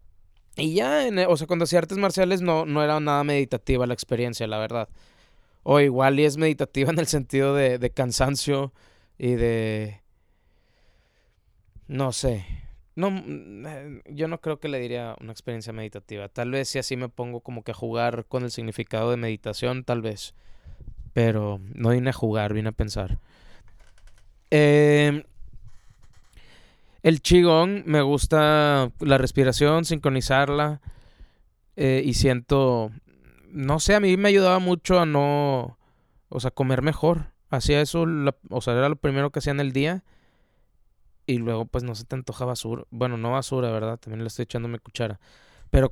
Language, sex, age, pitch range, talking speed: Spanish, male, 20-39, 110-145 Hz, 160 wpm